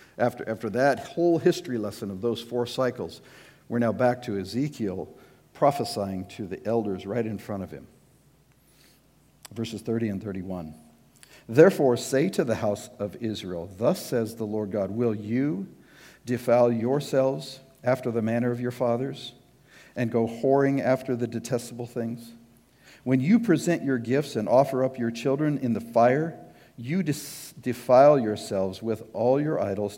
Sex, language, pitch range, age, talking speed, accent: male, English, 105-135 Hz, 50-69, 155 wpm, American